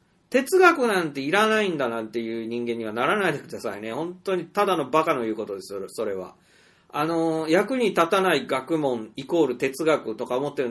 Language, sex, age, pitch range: Japanese, male, 40-59, 145-225 Hz